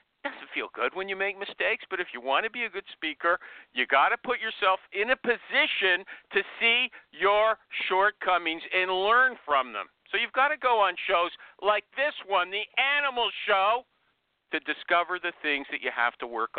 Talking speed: 200 wpm